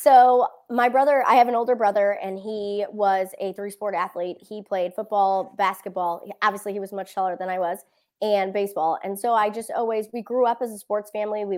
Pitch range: 190-215 Hz